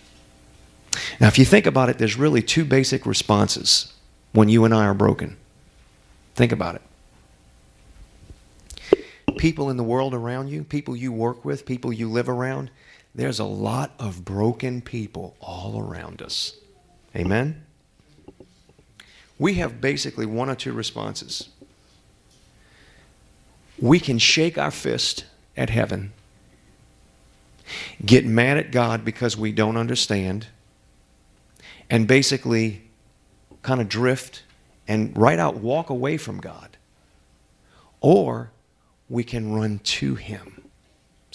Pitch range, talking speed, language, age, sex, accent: 95-135 Hz, 125 wpm, English, 40-59, male, American